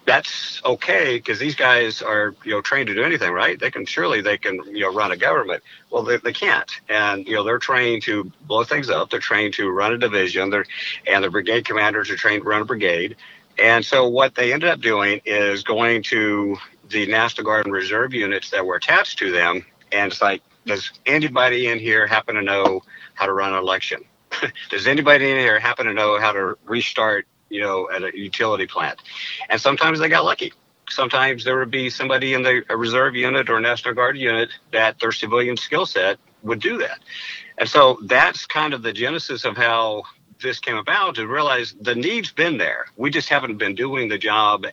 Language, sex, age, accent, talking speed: English, male, 50-69, American, 210 wpm